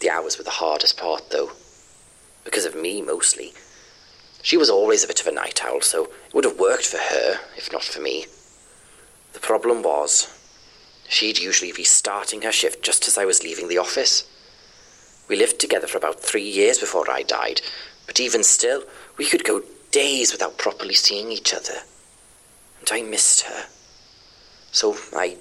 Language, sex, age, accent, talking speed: English, male, 30-49, British, 175 wpm